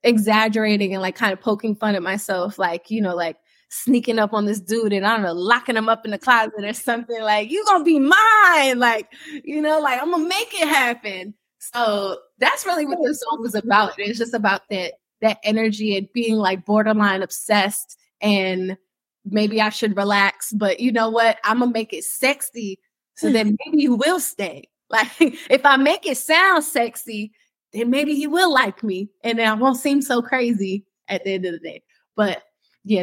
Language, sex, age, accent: English, female, 20-39, American